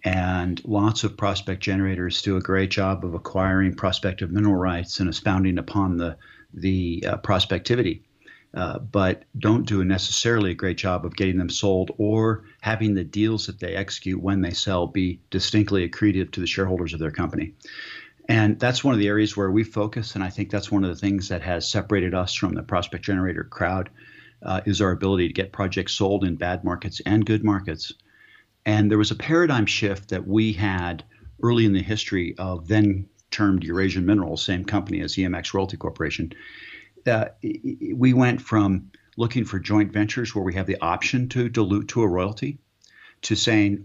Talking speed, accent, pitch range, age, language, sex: 185 wpm, American, 95-105 Hz, 50-69, English, male